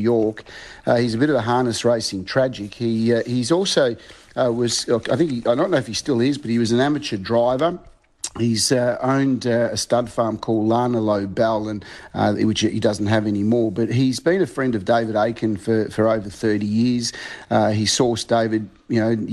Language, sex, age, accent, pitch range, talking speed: English, male, 50-69, Australian, 110-120 Hz, 210 wpm